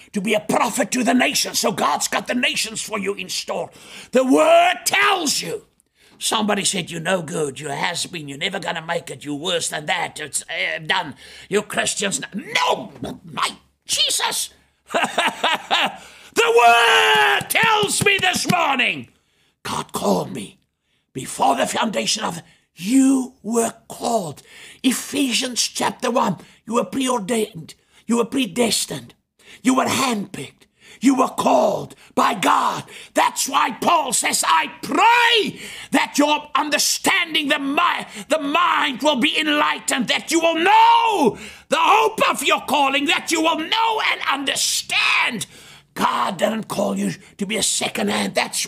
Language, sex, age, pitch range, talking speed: English, male, 60-79, 200-305 Hz, 145 wpm